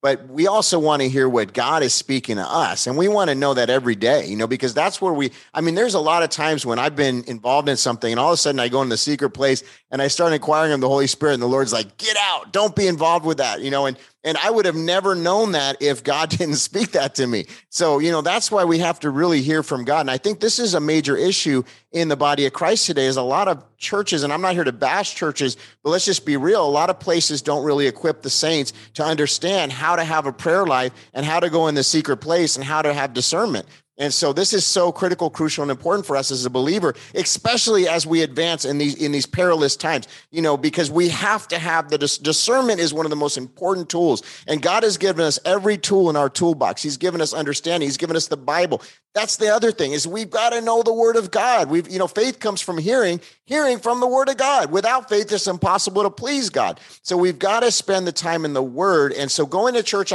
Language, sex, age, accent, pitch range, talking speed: English, male, 30-49, American, 140-190 Hz, 265 wpm